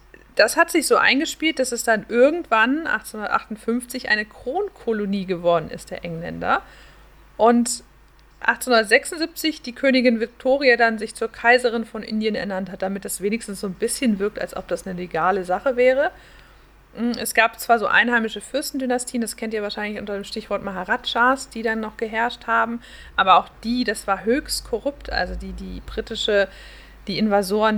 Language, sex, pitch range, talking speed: German, female, 200-240 Hz, 160 wpm